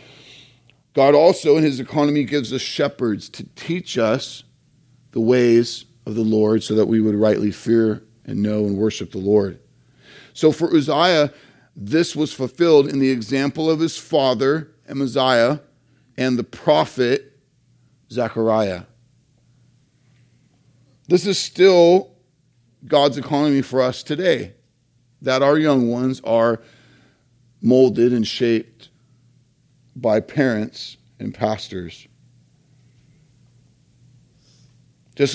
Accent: American